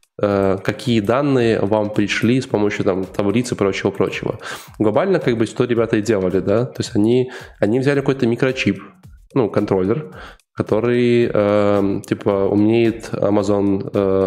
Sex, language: male, Russian